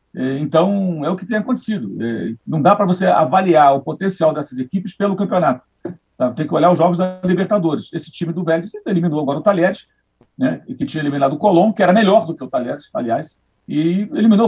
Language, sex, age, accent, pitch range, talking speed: Portuguese, male, 50-69, Brazilian, 150-200 Hz, 205 wpm